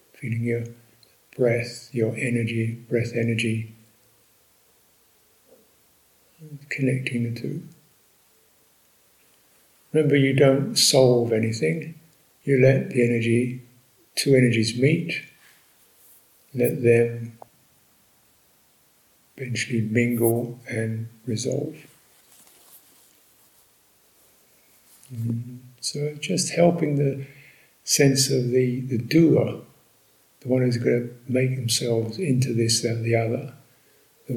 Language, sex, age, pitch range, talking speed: English, male, 60-79, 115-135 Hz, 90 wpm